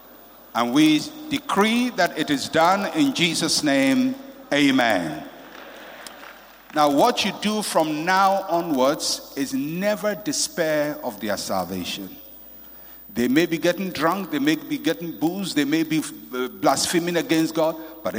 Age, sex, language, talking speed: 60-79, male, English, 135 wpm